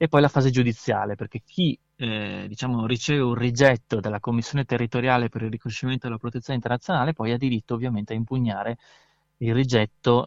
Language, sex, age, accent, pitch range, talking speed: Italian, male, 30-49, native, 110-140 Hz, 165 wpm